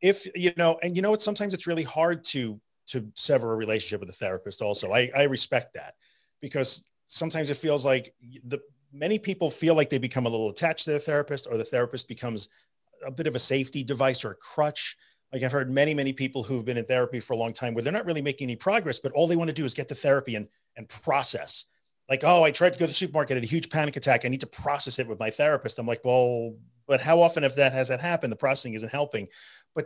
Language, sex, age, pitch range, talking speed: English, male, 40-59, 120-160 Hz, 255 wpm